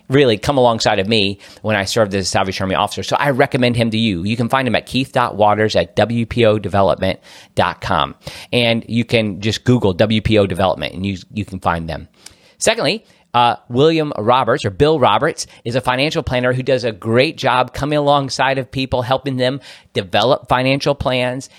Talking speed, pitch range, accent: 180 wpm, 105-135 Hz, American